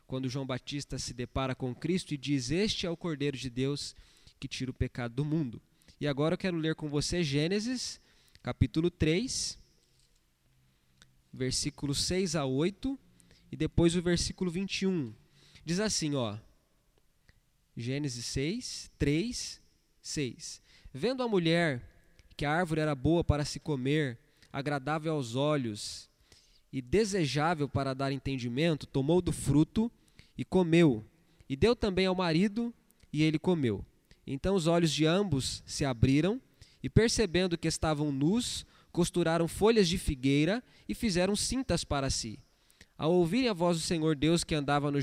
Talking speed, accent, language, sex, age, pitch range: 145 wpm, Brazilian, Portuguese, male, 20-39, 135-175 Hz